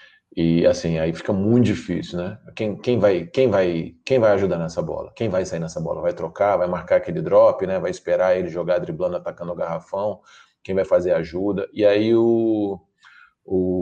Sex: male